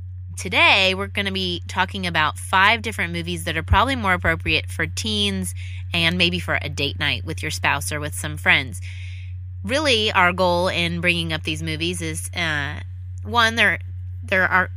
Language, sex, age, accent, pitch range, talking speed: English, female, 20-39, American, 85-90 Hz, 175 wpm